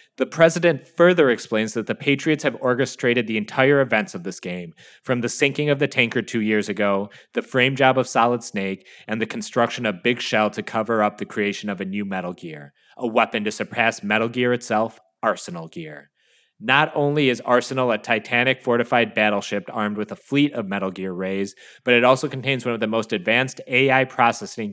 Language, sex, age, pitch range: English, male, 30-49, 105-130 Hz